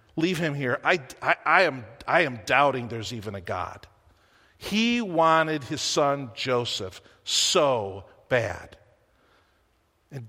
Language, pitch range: English, 140-230 Hz